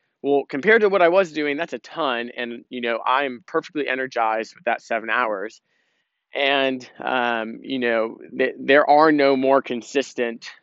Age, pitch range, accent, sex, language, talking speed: 20-39, 115-150 Hz, American, male, English, 170 wpm